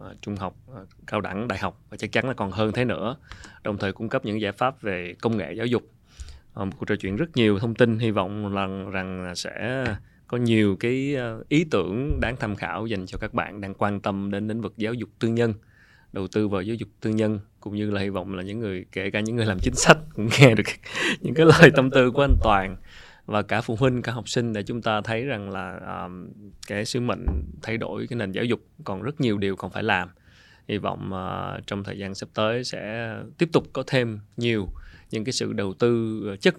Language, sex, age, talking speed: Vietnamese, male, 20-39, 235 wpm